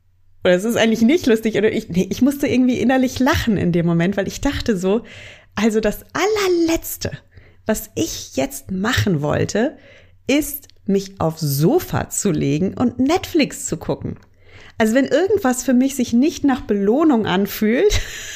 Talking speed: 145 wpm